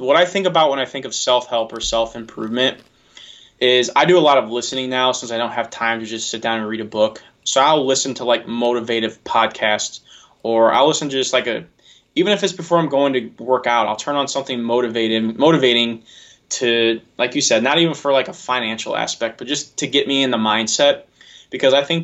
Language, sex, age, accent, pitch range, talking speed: English, male, 20-39, American, 115-135 Hz, 225 wpm